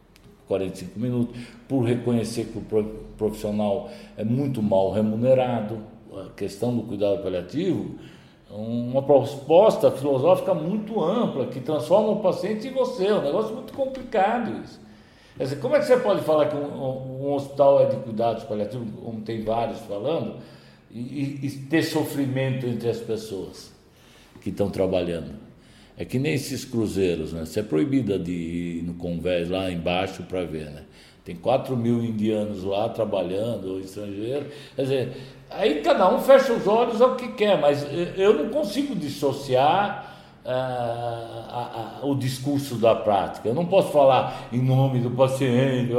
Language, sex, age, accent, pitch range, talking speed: Portuguese, male, 60-79, Brazilian, 105-145 Hz, 155 wpm